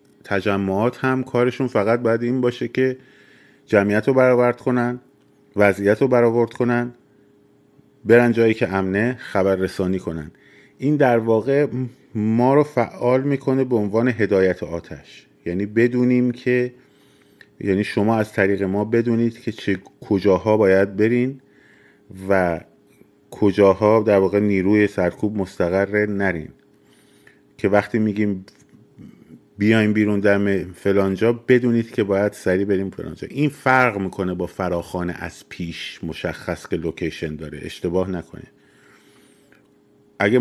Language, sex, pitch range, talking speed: Persian, male, 95-120 Hz, 125 wpm